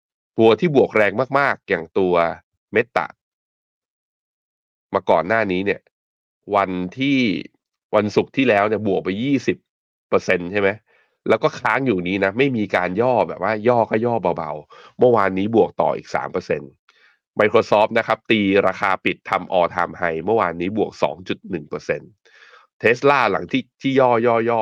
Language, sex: Thai, male